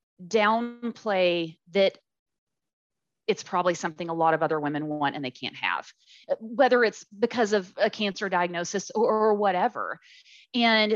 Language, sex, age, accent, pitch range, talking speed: English, female, 30-49, American, 180-225 Hz, 140 wpm